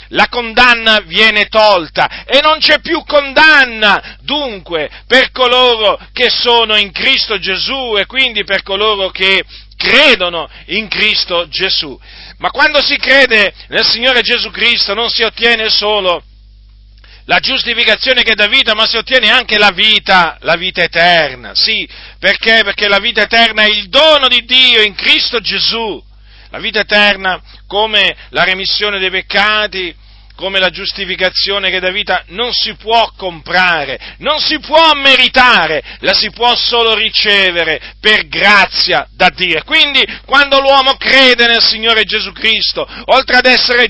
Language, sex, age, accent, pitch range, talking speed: Italian, male, 50-69, native, 190-245 Hz, 150 wpm